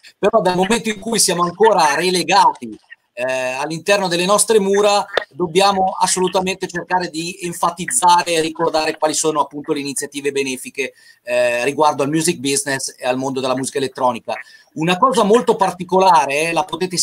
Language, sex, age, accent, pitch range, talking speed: Italian, male, 40-59, native, 150-195 Hz, 155 wpm